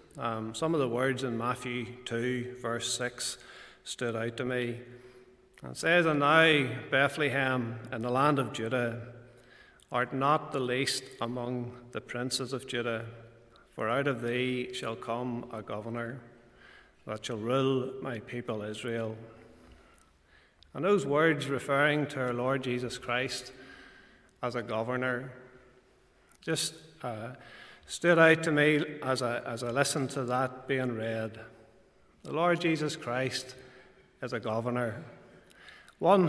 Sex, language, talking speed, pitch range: male, English, 135 wpm, 120-145 Hz